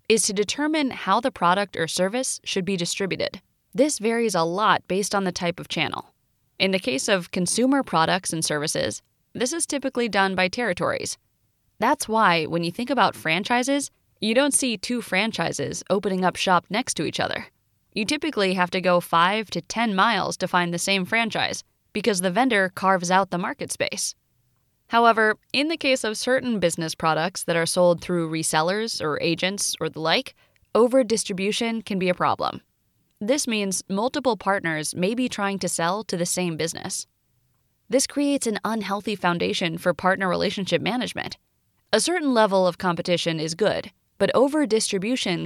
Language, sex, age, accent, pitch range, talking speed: English, female, 20-39, American, 175-230 Hz, 170 wpm